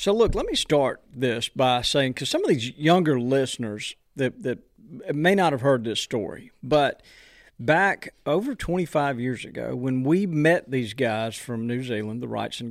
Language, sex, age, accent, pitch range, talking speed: English, male, 40-59, American, 120-165 Hz, 185 wpm